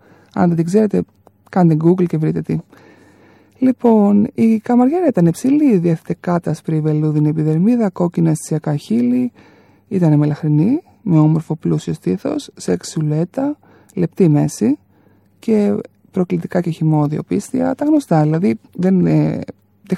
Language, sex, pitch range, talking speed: Greek, male, 155-225 Hz, 125 wpm